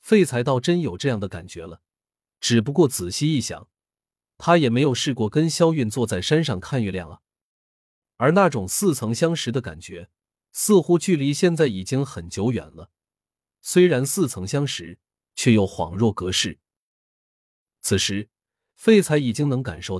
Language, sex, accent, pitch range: Chinese, male, native, 100-150 Hz